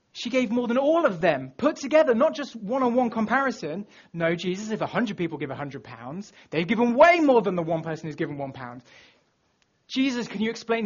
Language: English